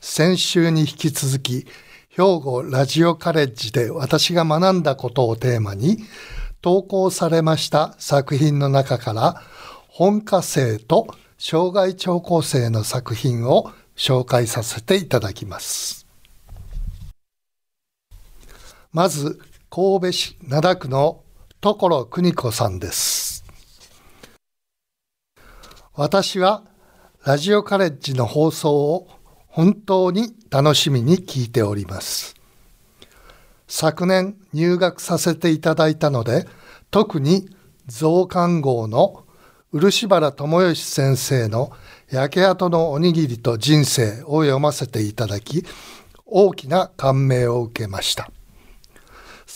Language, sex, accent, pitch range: Japanese, male, native, 130-180 Hz